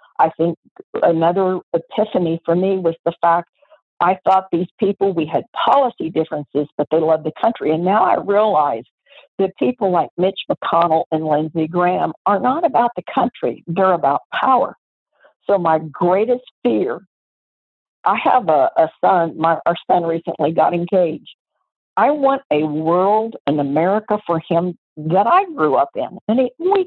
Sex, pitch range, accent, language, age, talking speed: female, 160-215 Hz, American, English, 60-79, 165 wpm